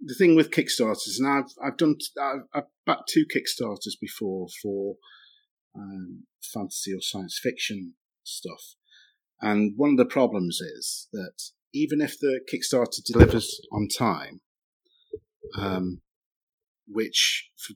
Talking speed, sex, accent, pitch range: 125 wpm, male, British, 95-145 Hz